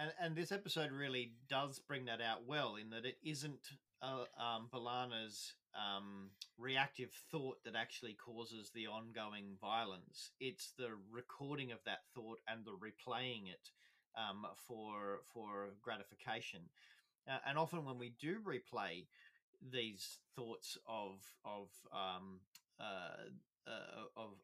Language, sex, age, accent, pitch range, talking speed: English, male, 30-49, Australian, 110-140 Hz, 130 wpm